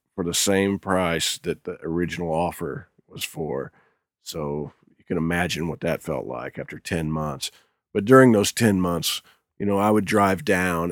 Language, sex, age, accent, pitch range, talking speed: English, male, 40-59, American, 85-110 Hz, 175 wpm